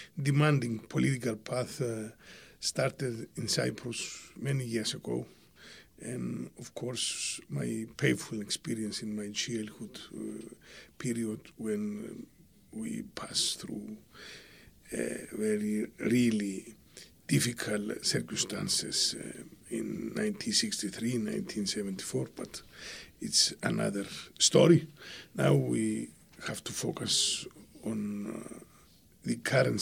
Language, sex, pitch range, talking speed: English, male, 105-155 Hz, 95 wpm